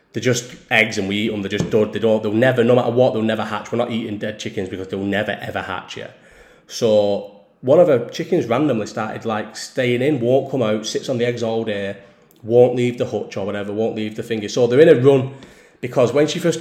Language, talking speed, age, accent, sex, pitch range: English, 240 wpm, 30-49, British, male, 110-130 Hz